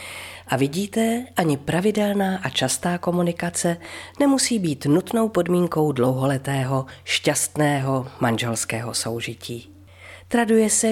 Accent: native